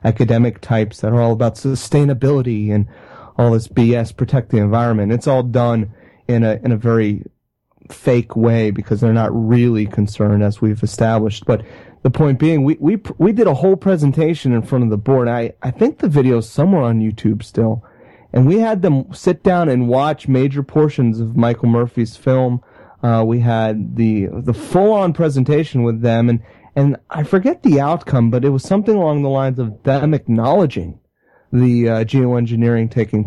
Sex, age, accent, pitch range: male, 30-49, American, 115-150 Hz